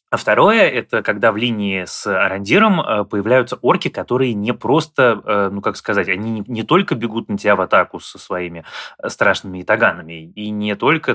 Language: Russian